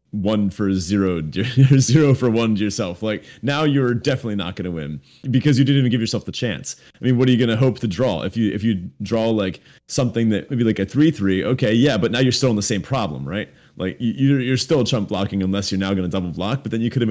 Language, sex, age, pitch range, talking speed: English, male, 30-49, 95-130 Hz, 275 wpm